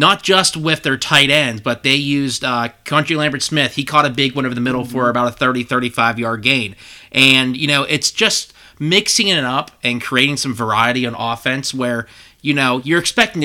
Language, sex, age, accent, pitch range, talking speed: English, male, 30-49, American, 120-150 Hz, 200 wpm